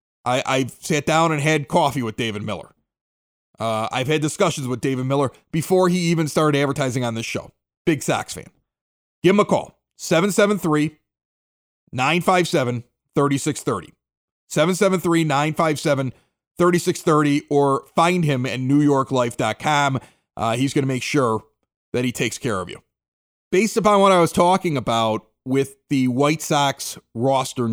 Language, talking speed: English, 130 wpm